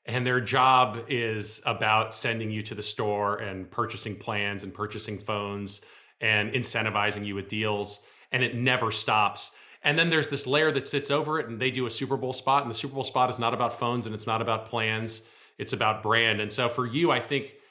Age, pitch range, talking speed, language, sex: 30-49, 110-130 Hz, 215 wpm, English, male